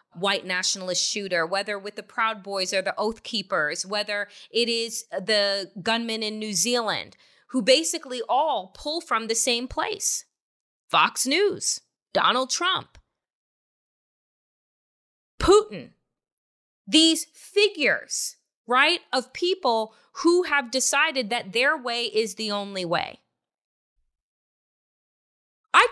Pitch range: 225-320 Hz